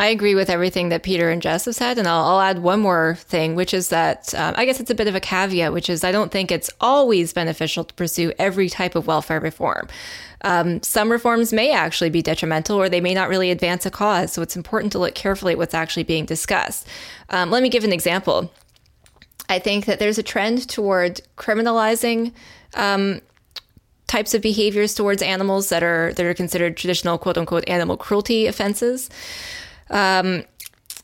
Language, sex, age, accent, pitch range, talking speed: English, female, 10-29, American, 170-210 Hz, 195 wpm